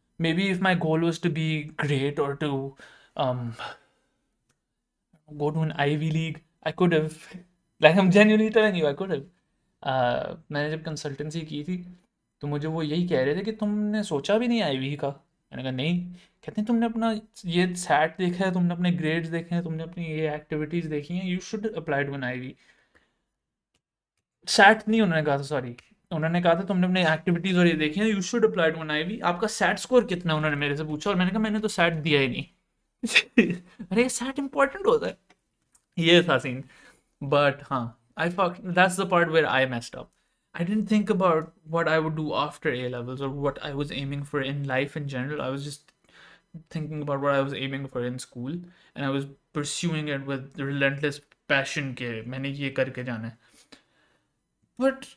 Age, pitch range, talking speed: 20-39, 140-185 Hz, 150 wpm